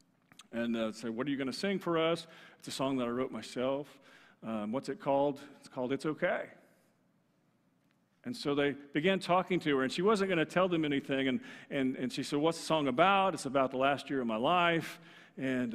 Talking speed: 230 wpm